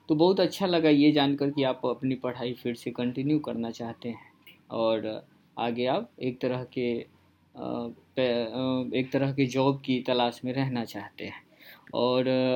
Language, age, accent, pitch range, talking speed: Hindi, 20-39, native, 125-145 Hz, 160 wpm